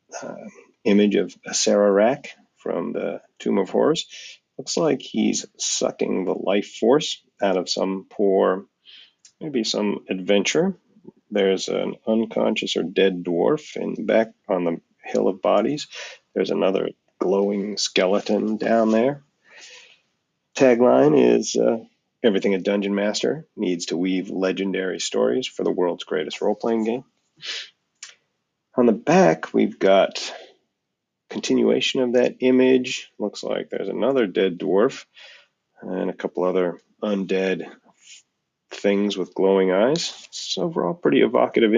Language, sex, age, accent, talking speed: English, male, 40-59, American, 130 wpm